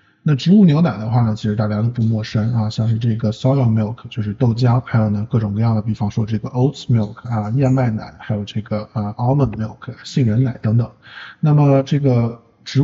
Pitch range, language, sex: 110-130 Hz, Chinese, male